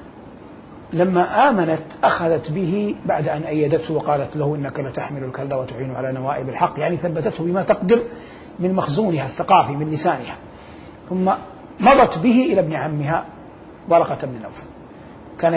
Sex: male